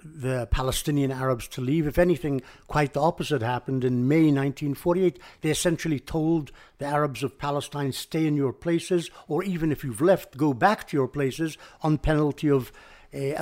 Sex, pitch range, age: male, 135-170 Hz, 60-79